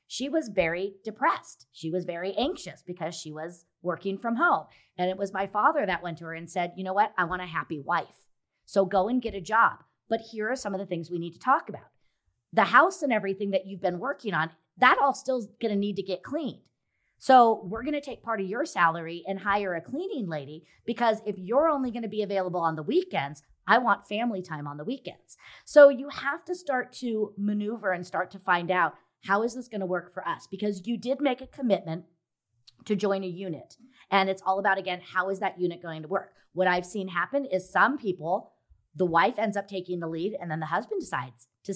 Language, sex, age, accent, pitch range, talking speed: English, female, 40-59, American, 175-225 Hz, 235 wpm